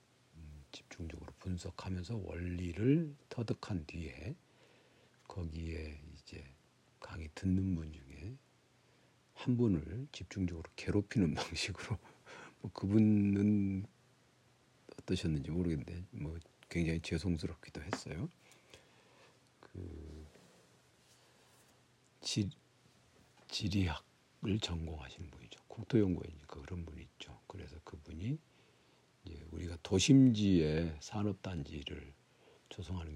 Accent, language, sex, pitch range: native, Korean, male, 80-100 Hz